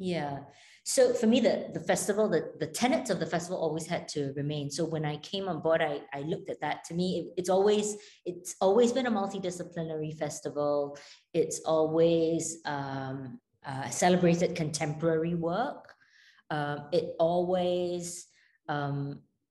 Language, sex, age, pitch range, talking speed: English, female, 20-39, 155-195 Hz, 155 wpm